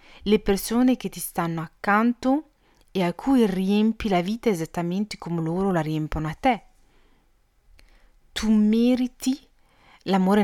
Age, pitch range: 30-49, 170-225 Hz